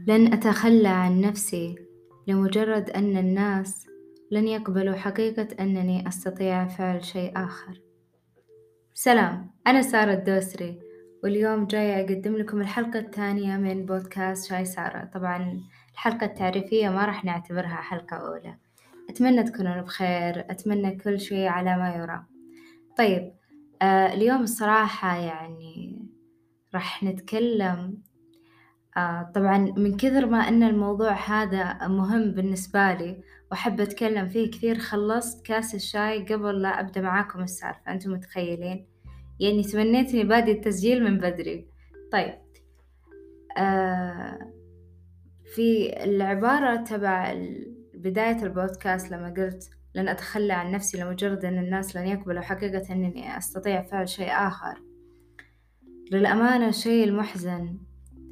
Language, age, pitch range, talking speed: Arabic, 20-39, 180-215 Hz, 115 wpm